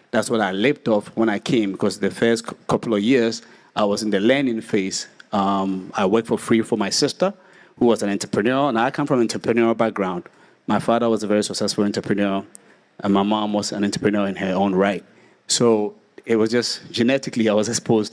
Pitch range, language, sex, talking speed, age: 105-120 Hz, English, male, 210 wpm, 30-49